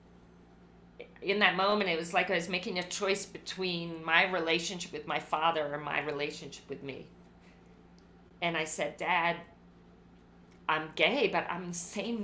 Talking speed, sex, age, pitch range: 155 wpm, female, 40-59, 150-200 Hz